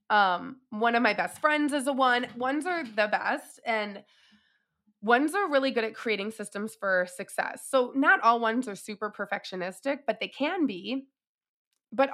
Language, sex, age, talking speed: English, female, 20-39, 175 wpm